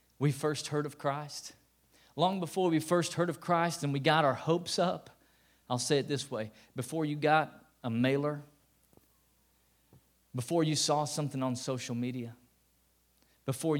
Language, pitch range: English, 130-170 Hz